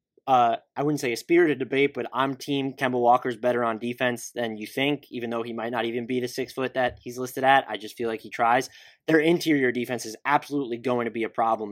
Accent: American